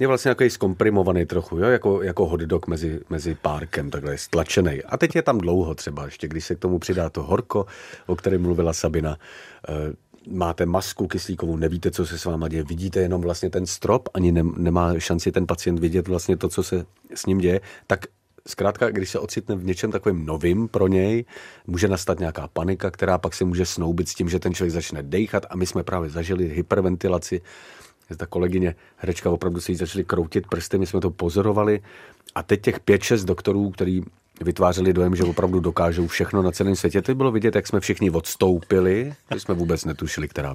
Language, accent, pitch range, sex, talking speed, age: Czech, native, 85-100 Hz, male, 200 wpm, 40-59